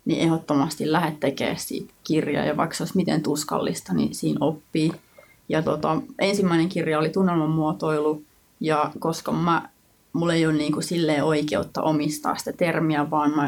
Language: Finnish